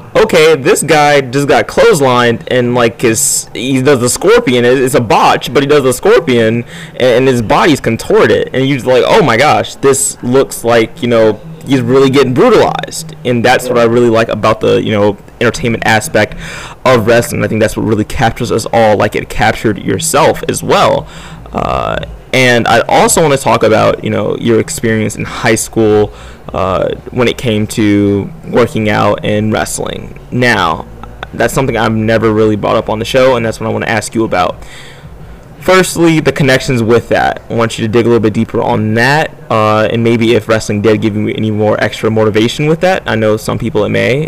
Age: 20-39